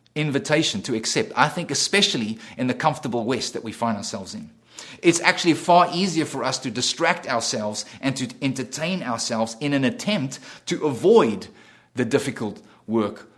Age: 30-49